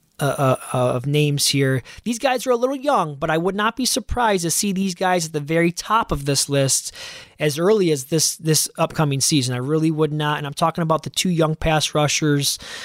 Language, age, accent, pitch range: English, 20-39, American, 150-195 Hz